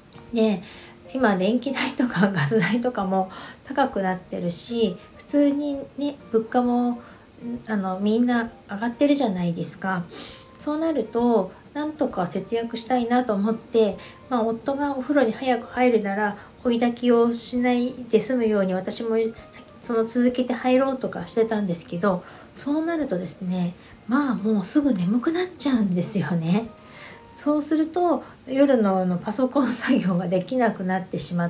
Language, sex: Japanese, female